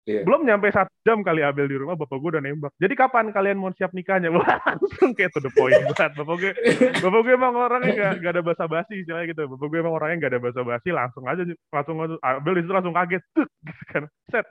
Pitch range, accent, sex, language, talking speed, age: 125-170 Hz, native, male, Indonesian, 230 wpm, 20-39